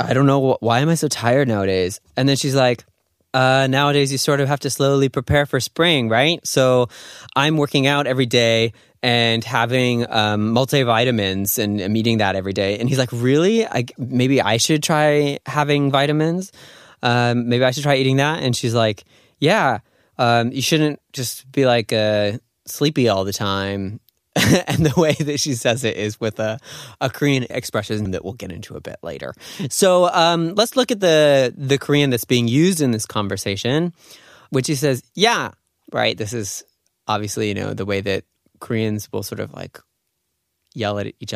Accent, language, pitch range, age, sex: American, Korean, 110-145 Hz, 20-39, male